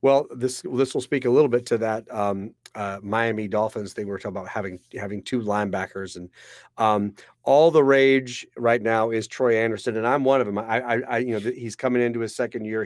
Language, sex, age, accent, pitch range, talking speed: English, male, 40-59, American, 110-135 Hz, 230 wpm